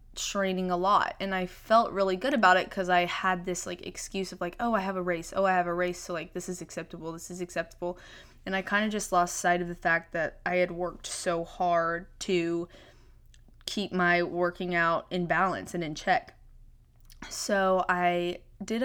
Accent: American